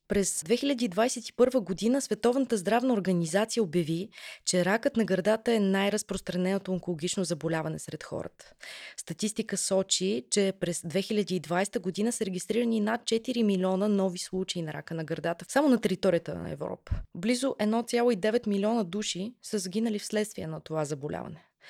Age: 20-39